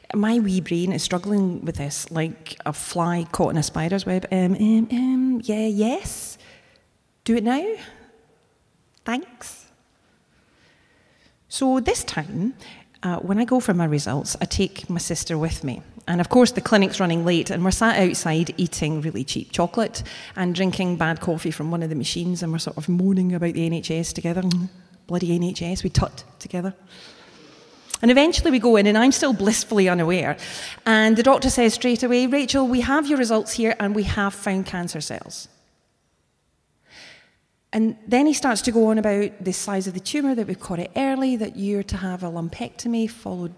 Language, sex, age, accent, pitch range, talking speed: English, female, 30-49, British, 175-245 Hz, 180 wpm